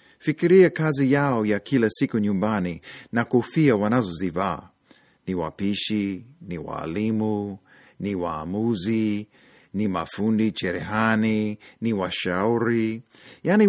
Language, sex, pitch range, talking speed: Swahili, male, 105-140 Hz, 100 wpm